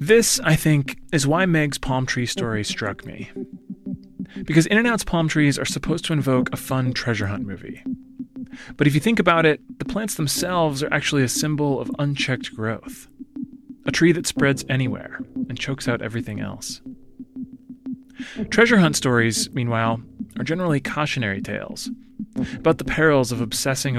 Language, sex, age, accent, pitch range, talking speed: English, male, 30-49, American, 125-205 Hz, 160 wpm